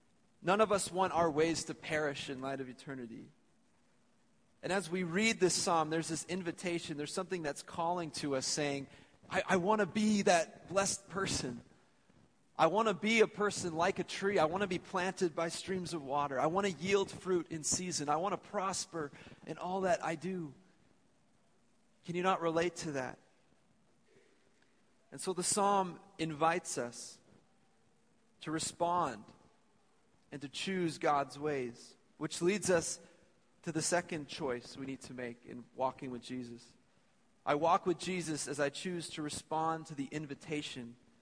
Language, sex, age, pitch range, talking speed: English, male, 30-49, 145-185 Hz, 165 wpm